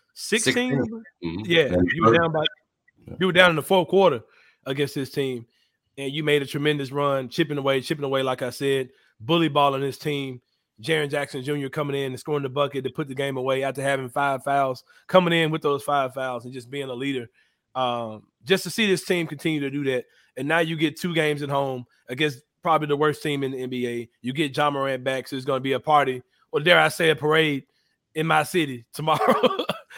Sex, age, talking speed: male, 30-49, 220 wpm